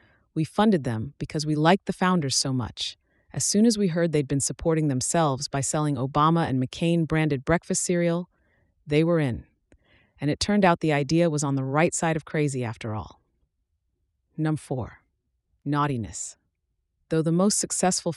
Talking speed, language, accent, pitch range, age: 170 wpm, English, American, 135-170 Hz, 30-49